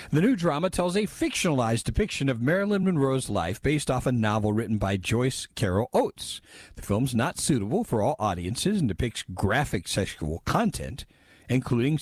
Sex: male